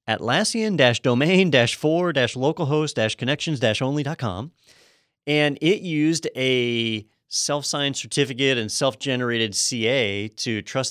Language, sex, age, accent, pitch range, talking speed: English, male, 30-49, American, 110-140 Hz, 130 wpm